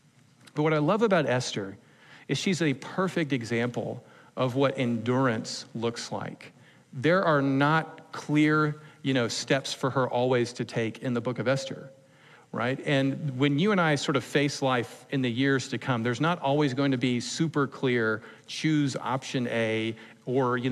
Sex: male